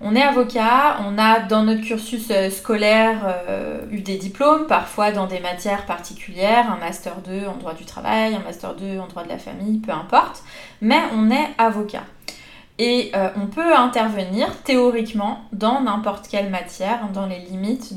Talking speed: 175 wpm